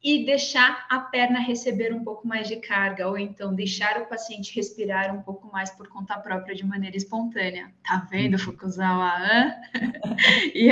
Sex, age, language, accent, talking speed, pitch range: female, 20-39, Portuguese, Brazilian, 160 wpm, 210-255 Hz